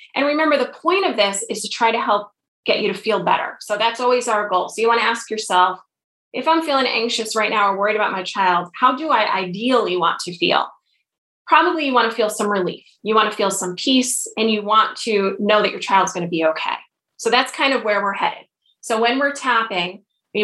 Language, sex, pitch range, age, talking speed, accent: English, female, 195-250 Hz, 20-39, 240 wpm, American